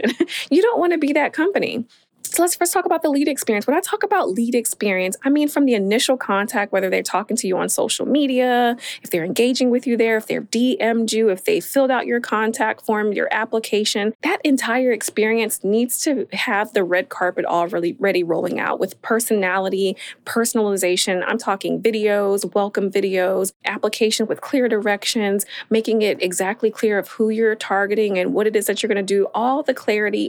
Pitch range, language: 190-235 Hz, English